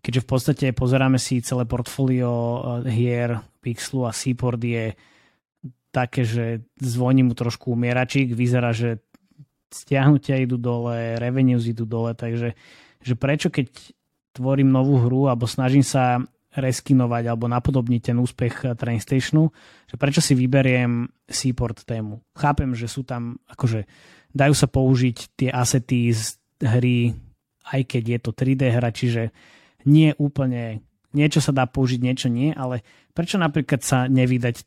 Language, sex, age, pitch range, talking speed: Slovak, male, 20-39, 120-135 Hz, 140 wpm